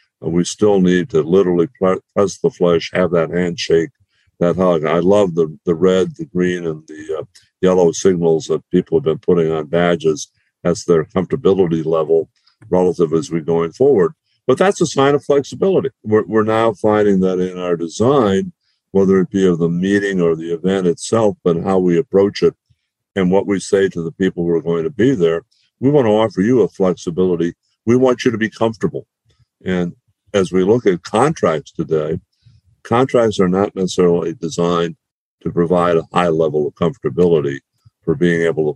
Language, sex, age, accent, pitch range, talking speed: English, male, 60-79, American, 85-100 Hz, 185 wpm